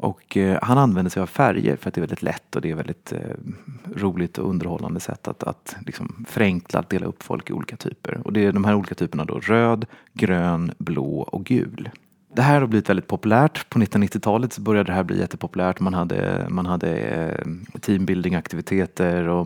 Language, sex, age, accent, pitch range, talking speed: Swedish, male, 30-49, native, 90-115 Hz, 195 wpm